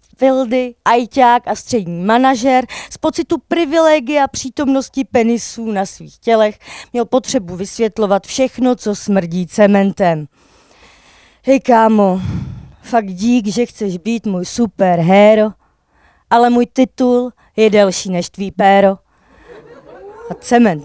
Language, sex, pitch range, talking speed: Czech, female, 185-255 Hz, 115 wpm